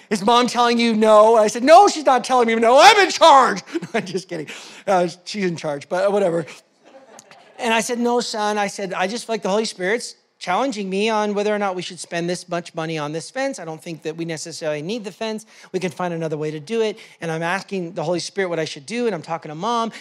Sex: male